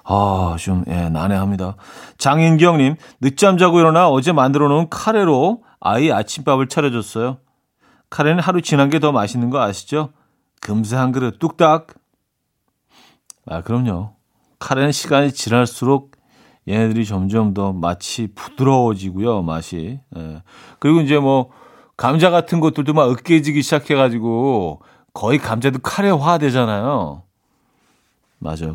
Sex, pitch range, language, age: male, 100-155 Hz, Korean, 40-59